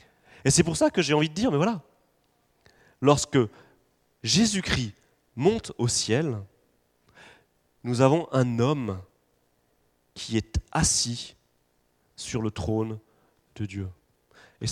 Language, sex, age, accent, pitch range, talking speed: French, male, 30-49, French, 105-170 Hz, 120 wpm